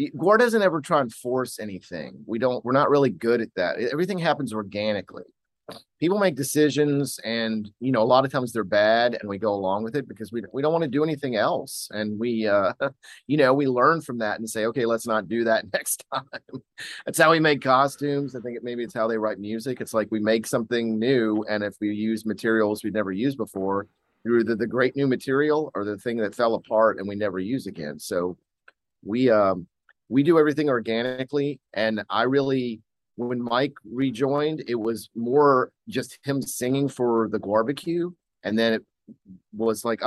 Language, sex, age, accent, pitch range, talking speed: English, male, 30-49, American, 110-140 Hz, 200 wpm